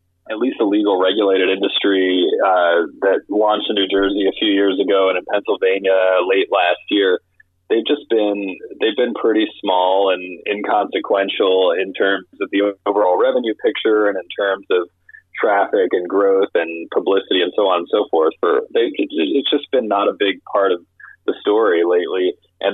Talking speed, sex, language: 180 wpm, male, English